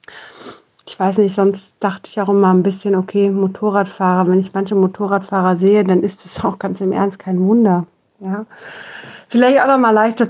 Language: German